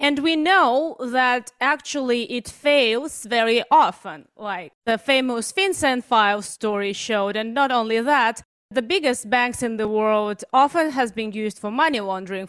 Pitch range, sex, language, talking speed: 210-270 Hz, female, English, 160 wpm